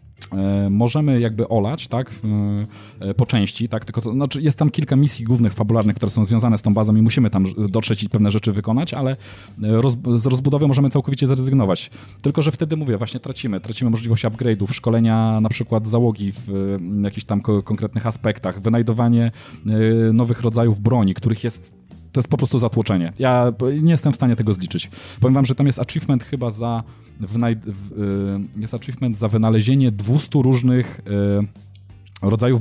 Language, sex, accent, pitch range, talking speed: Polish, male, native, 105-125 Hz, 160 wpm